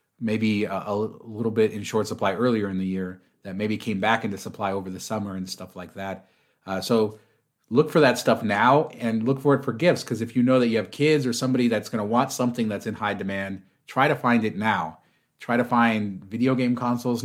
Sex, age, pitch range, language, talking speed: male, 30-49, 105-125 Hz, English, 235 wpm